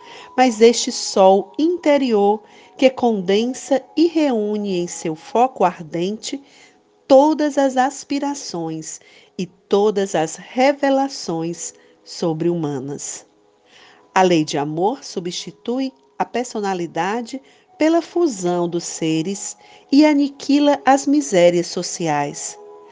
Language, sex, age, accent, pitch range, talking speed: Portuguese, female, 50-69, Brazilian, 170-275 Hz, 95 wpm